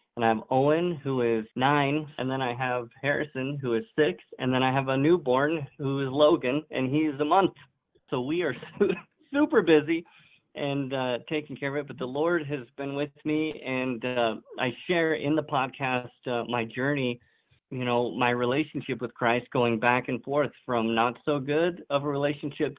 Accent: American